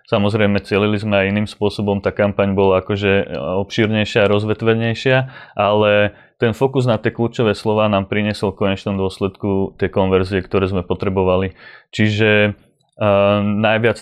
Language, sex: Slovak, male